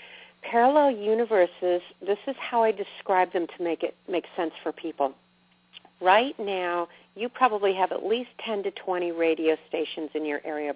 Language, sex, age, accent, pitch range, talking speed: English, female, 50-69, American, 160-205 Hz, 165 wpm